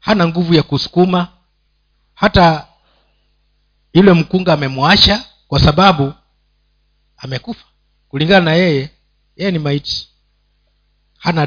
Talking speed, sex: 95 wpm, male